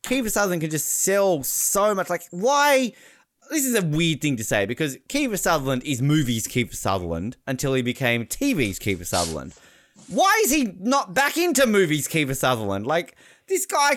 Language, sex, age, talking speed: English, male, 20-39, 175 wpm